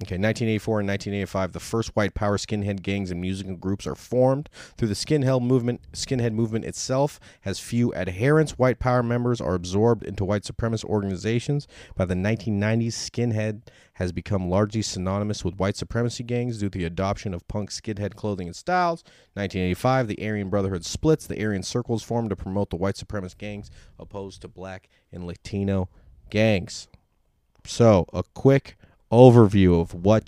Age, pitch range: 30-49, 95-115 Hz